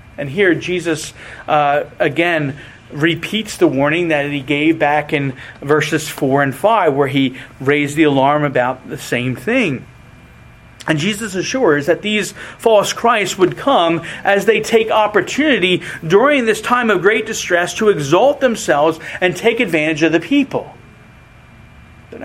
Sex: male